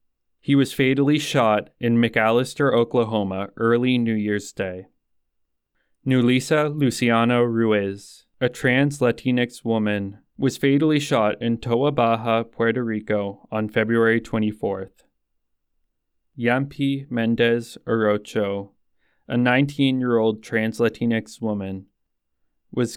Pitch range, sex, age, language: 105-125 Hz, male, 20-39, English